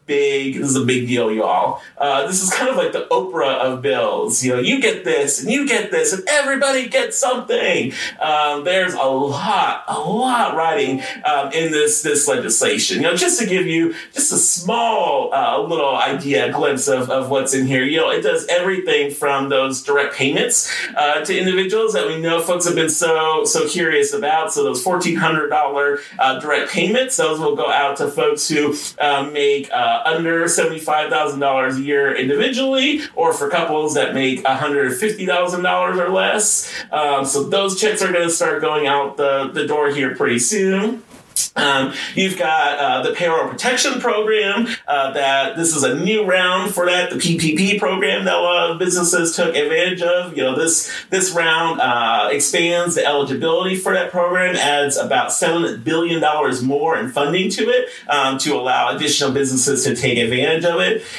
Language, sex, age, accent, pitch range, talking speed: English, male, 40-59, American, 140-215 Hz, 185 wpm